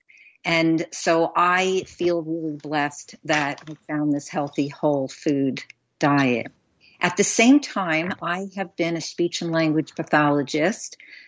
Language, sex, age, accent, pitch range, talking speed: English, female, 50-69, American, 155-185 Hz, 140 wpm